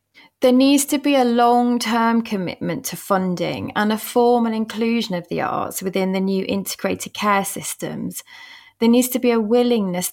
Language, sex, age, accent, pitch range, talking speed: English, female, 20-39, British, 190-240 Hz, 165 wpm